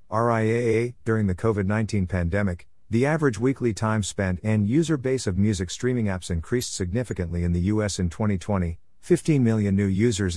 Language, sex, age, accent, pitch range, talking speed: English, male, 50-69, American, 90-110 Hz, 170 wpm